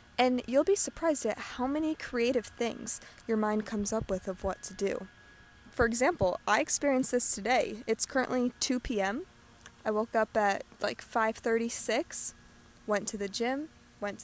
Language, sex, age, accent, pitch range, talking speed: English, female, 20-39, American, 215-260 Hz, 165 wpm